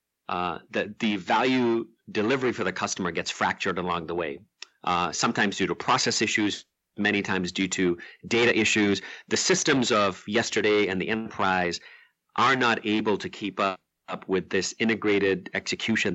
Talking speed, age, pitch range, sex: 160 wpm, 40-59, 95-115 Hz, male